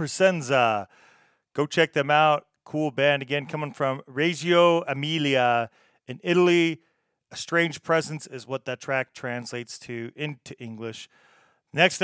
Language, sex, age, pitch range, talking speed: English, male, 40-59, 130-160 Hz, 125 wpm